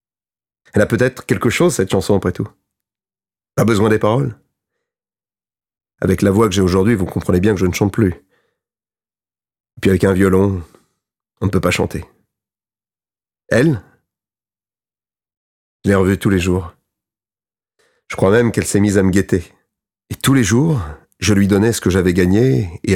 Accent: French